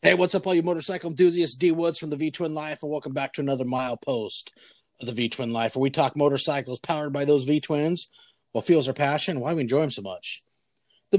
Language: English